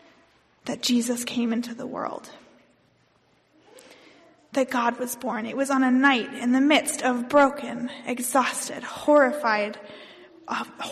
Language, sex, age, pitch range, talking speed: English, female, 20-39, 240-290 Hz, 125 wpm